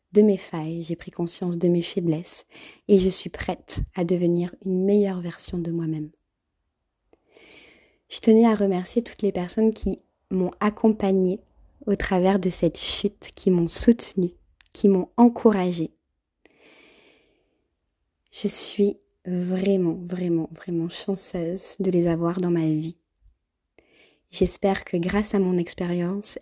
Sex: female